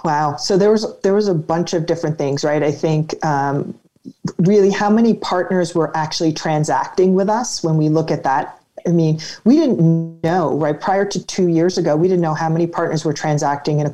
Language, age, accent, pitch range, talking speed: English, 40-59, American, 160-185 Hz, 215 wpm